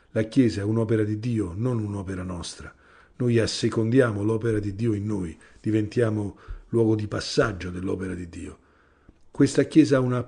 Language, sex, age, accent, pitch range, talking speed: Italian, male, 50-69, native, 105-125 Hz, 160 wpm